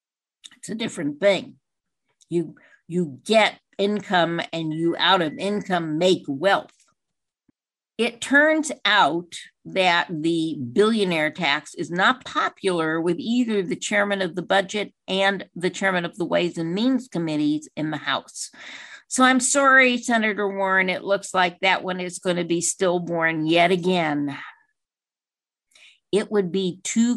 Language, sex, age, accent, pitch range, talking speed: English, female, 50-69, American, 165-205 Hz, 145 wpm